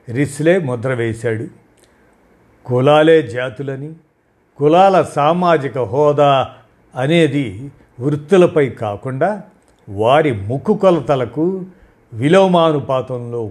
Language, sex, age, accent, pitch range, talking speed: Telugu, male, 50-69, native, 120-160 Hz, 60 wpm